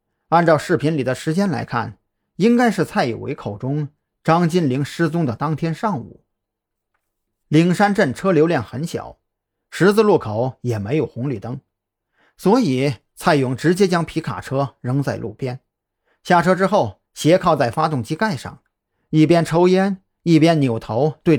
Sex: male